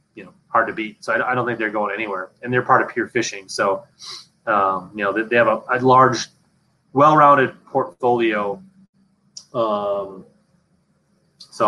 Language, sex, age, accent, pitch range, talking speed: English, male, 30-49, American, 110-160 Hz, 160 wpm